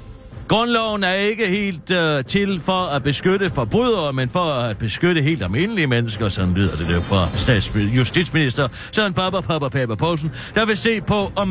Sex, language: male, Danish